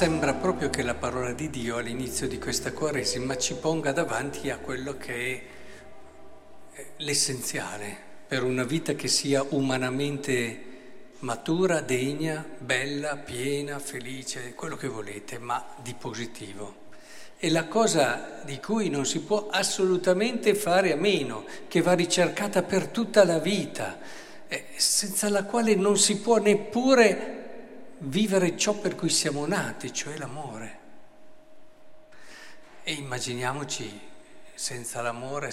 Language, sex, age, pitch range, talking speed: Italian, male, 60-79, 130-185 Hz, 125 wpm